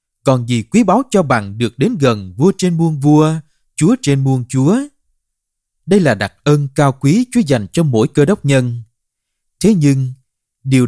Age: 20-39